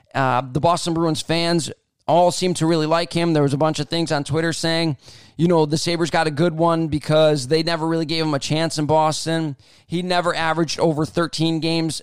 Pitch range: 150-180 Hz